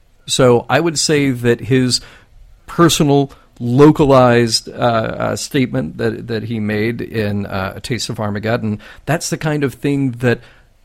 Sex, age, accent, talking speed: male, 50-69, American, 150 wpm